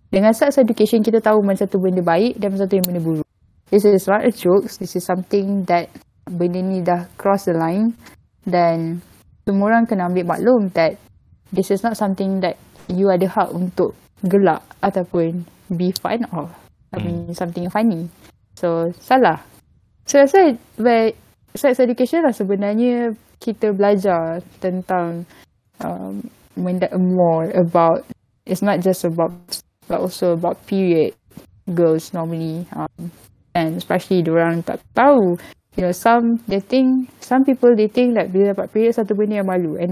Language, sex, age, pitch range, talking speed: Malay, female, 10-29, 175-220 Hz, 160 wpm